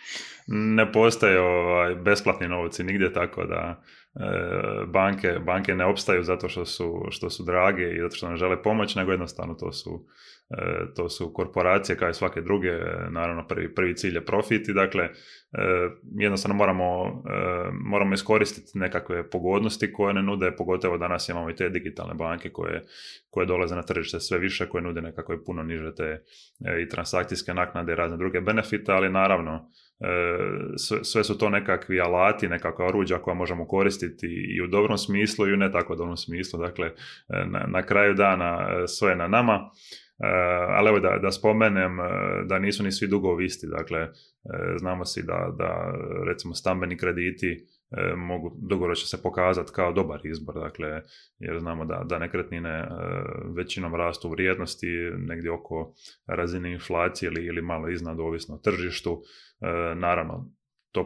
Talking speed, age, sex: 160 wpm, 20-39, male